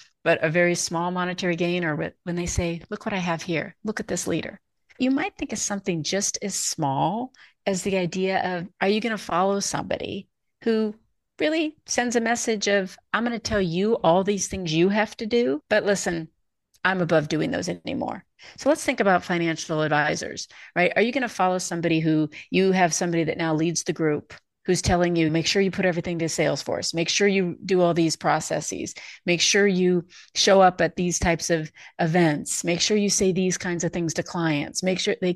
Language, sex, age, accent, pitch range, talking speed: English, female, 40-59, American, 165-205 Hz, 210 wpm